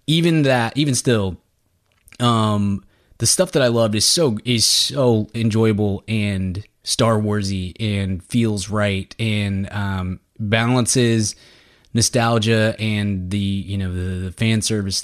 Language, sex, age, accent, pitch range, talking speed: English, male, 20-39, American, 100-120 Hz, 130 wpm